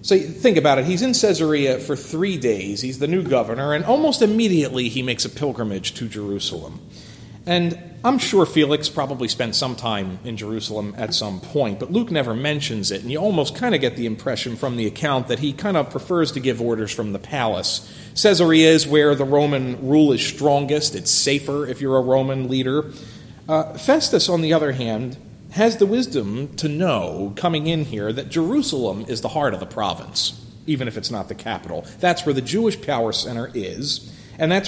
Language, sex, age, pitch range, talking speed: English, male, 40-59, 115-160 Hz, 200 wpm